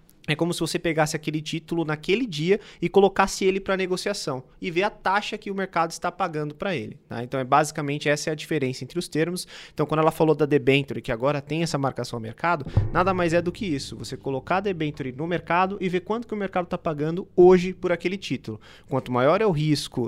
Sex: male